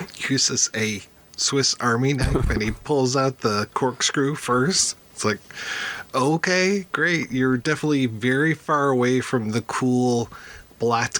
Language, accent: English, American